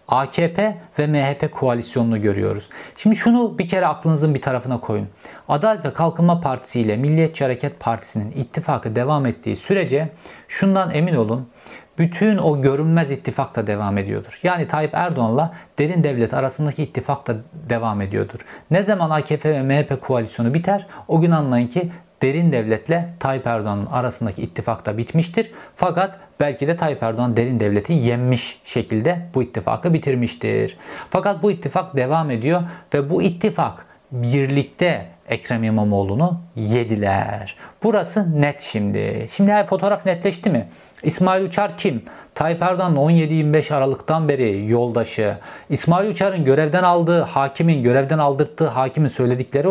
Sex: male